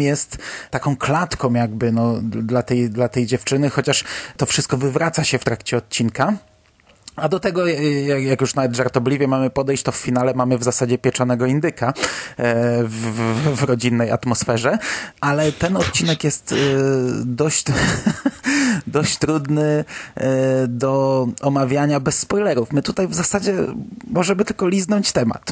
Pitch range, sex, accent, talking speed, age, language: 125-155 Hz, male, native, 135 wpm, 30-49, Polish